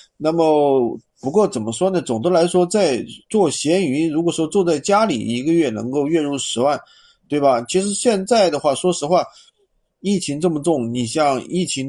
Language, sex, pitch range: Chinese, male, 130-180 Hz